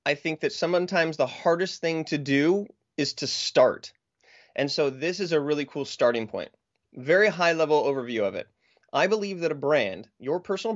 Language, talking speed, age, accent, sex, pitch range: English, 190 wpm, 30-49, American, male, 140-190 Hz